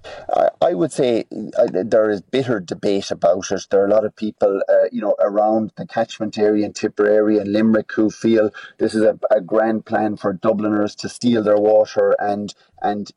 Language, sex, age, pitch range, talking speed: English, male, 30-49, 100-110 Hz, 195 wpm